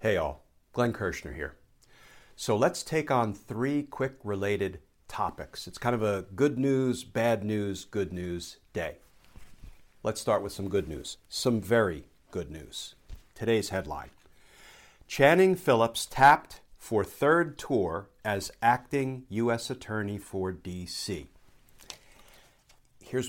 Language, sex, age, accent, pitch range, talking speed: English, male, 50-69, American, 95-125 Hz, 125 wpm